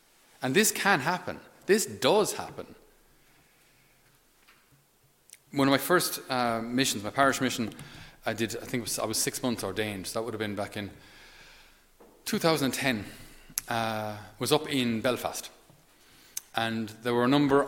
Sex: male